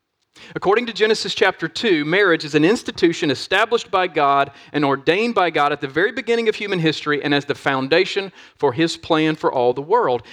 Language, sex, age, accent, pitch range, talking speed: English, male, 40-59, American, 140-185 Hz, 200 wpm